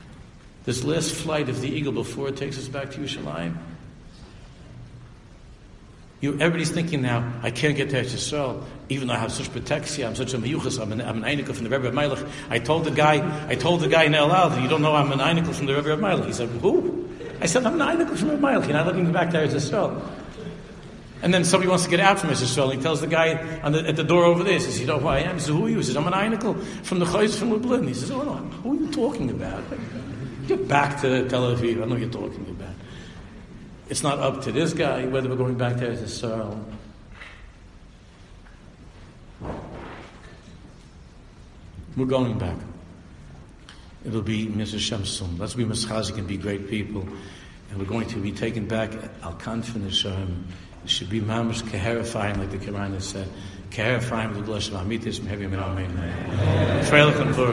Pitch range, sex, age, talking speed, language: 105-150 Hz, male, 60-79, 200 wpm, English